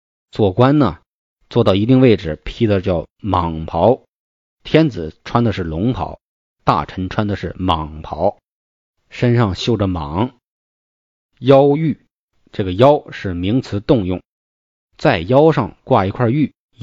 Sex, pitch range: male, 95-135 Hz